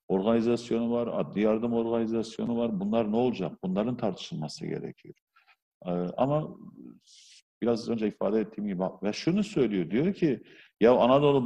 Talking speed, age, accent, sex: 135 wpm, 50-69, native, male